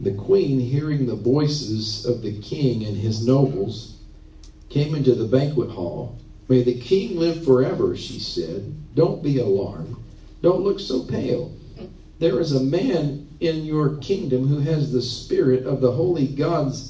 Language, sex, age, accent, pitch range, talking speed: English, male, 50-69, American, 115-145 Hz, 160 wpm